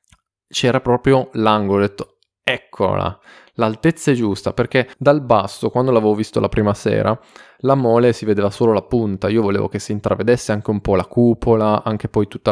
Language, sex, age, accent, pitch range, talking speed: Italian, male, 20-39, native, 105-145 Hz, 180 wpm